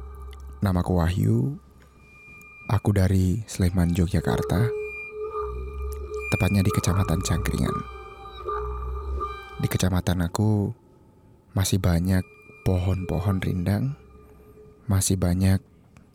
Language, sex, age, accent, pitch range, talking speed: Indonesian, male, 20-39, native, 85-115 Hz, 75 wpm